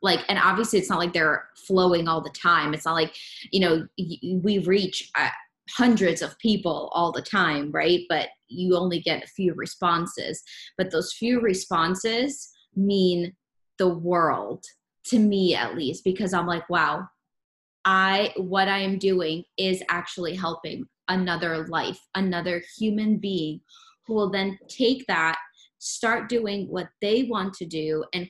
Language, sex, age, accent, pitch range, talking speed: English, female, 20-39, American, 170-210 Hz, 155 wpm